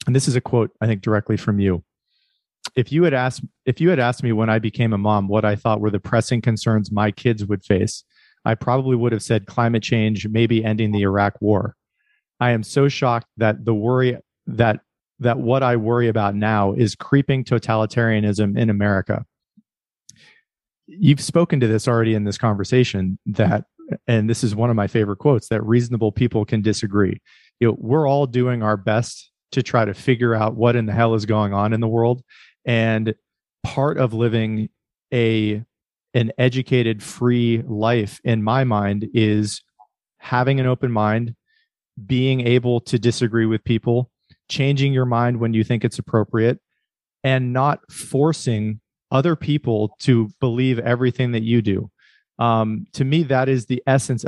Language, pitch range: English, 110-130 Hz